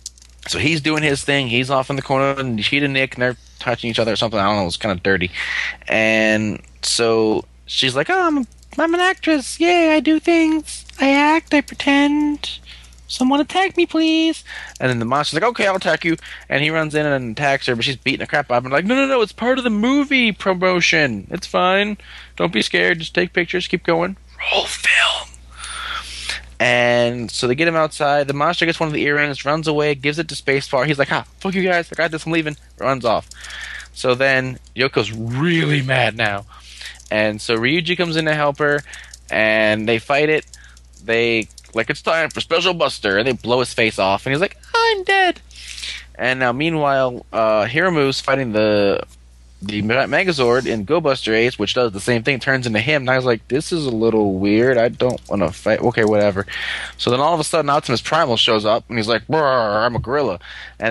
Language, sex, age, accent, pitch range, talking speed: English, male, 20-39, American, 110-170 Hz, 215 wpm